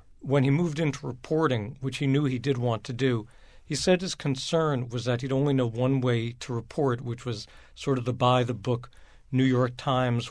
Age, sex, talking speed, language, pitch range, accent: 60-79, male, 215 wpm, English, 120-140 Hz, American